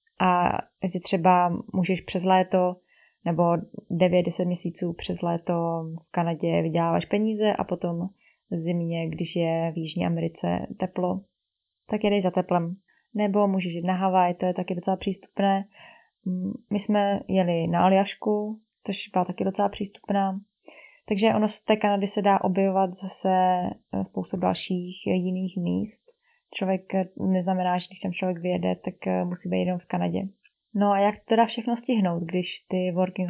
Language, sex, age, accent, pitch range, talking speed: Czech, female, 20-39, native, 180-205 Hz, 150 wpm